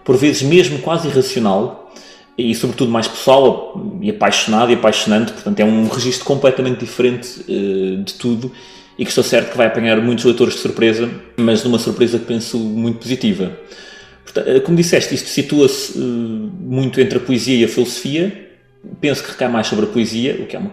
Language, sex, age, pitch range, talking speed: Portuguese, male, 20-39, 115-140 Hz, 190 wpm